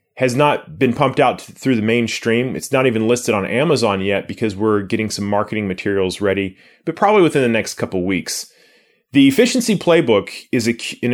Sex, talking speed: male, 200 wpm